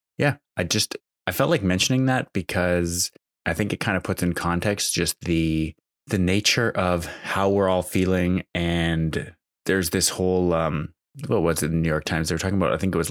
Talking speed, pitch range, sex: 215 wpm, 85-95 Hz, male